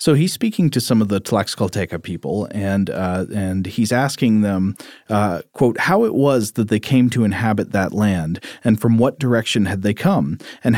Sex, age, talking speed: male, 40-59, 195 wpm